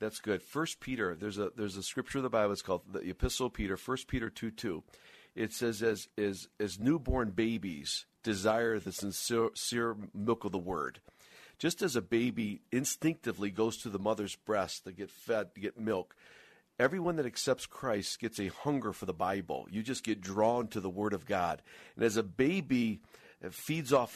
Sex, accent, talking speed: male, American, 195 wpm